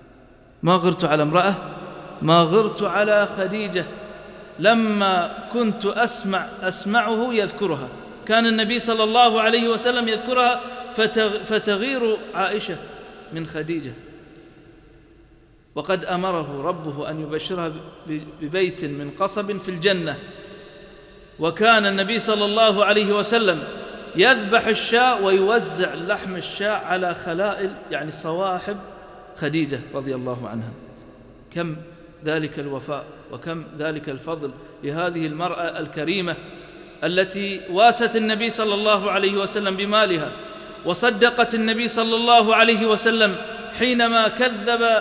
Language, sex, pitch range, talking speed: English, male, 170-225 Hz, 105 wpm